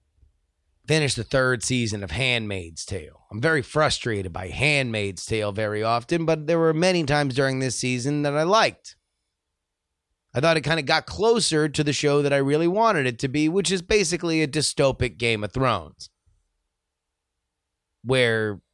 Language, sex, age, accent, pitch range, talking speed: English, male, 30-49, American, 95-145 Hz, 165 wpm